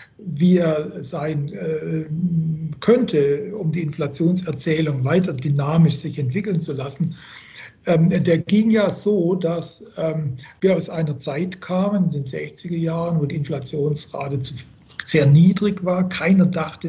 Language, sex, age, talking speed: German, male, 60-79, 120 wpm